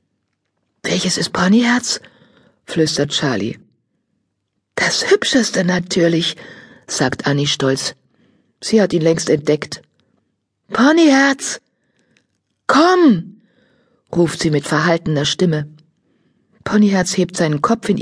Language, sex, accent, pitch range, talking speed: German, female, German, 165-235 Hz, 95 wpm